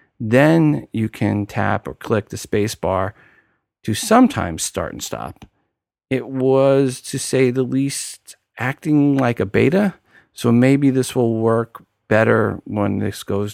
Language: English